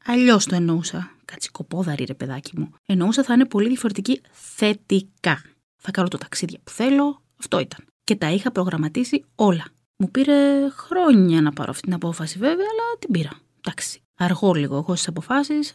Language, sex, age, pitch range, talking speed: Greek, female, 20-39, 170-240 Hz, 170 wpm